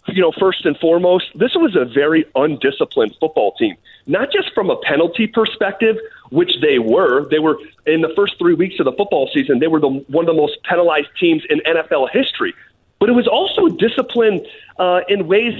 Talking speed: 200 wpm